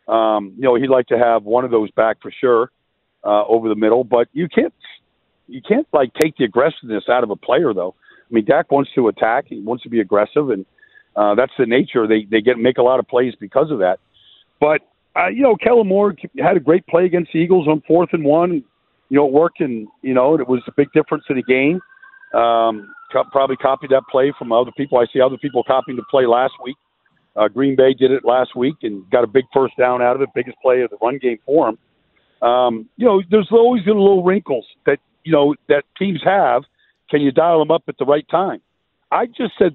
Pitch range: 125-170 Hz